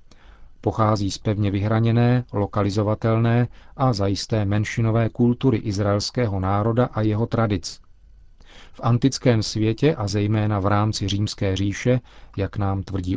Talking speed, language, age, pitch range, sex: 120 wpm, Czech, 40-59, 100-125 Hz, male